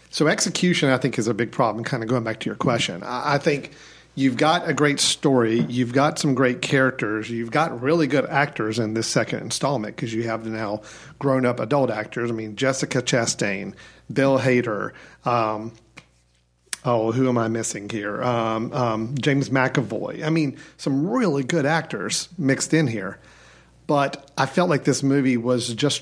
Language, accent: English, American